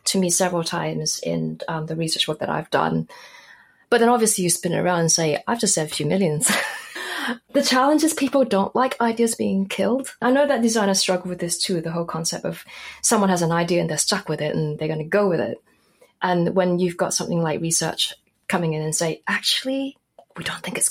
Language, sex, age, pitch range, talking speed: English, female, 30-49, 170-210 Hz, 230 wpm